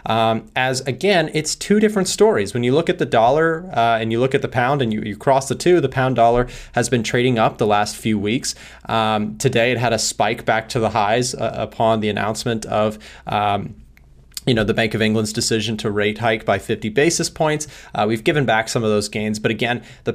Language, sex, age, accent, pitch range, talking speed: English, male, 20-39, American, 110-130 Hz, 225 wpm